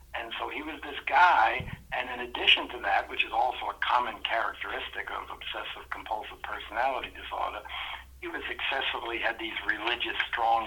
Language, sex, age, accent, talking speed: English, male, 60-79, American, 165 wpm